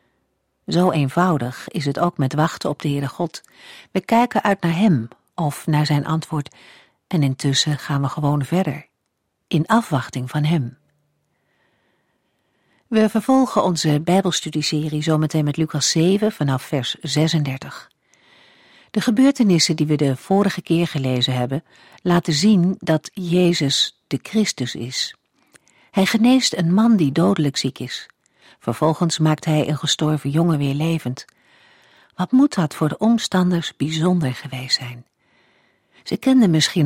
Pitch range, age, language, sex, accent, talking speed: 145-180 Hz, 50-69, Dutch, female, Dutch, 140 wpm